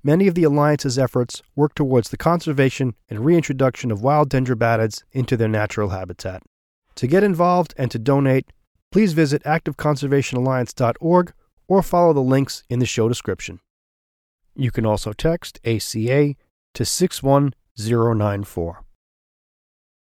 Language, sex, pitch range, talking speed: English, male, 120-150 Hz, 125 wpm